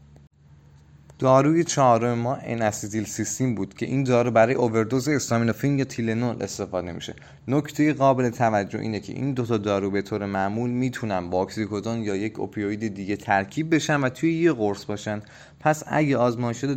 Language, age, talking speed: Persian, 20-39, 155 wpm